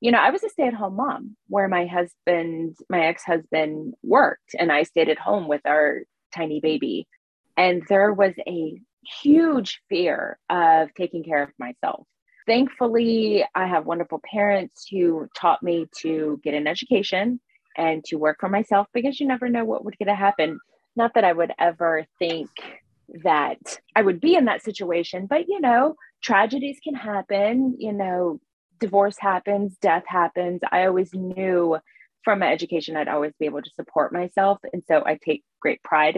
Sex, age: female, 20-39